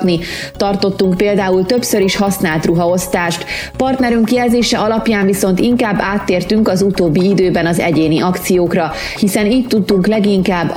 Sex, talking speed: female, 125 wpm